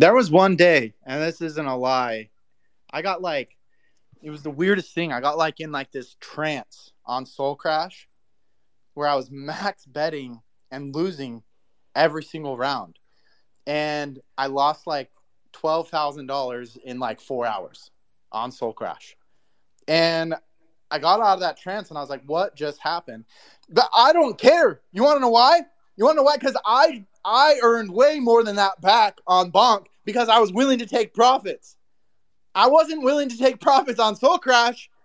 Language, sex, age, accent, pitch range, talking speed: English, male, 20-39, American, 155-230 Hz, 180 wpm